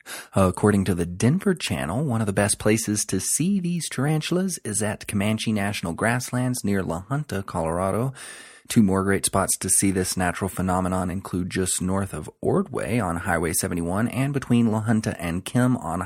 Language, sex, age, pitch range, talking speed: English, male, 30-49, 95-125 Hz, 175 wpm